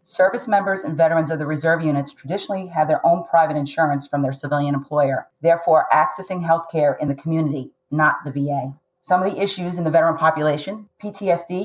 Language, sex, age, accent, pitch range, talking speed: English, female, 40-59, American, 145-175 Hz, 190 wpm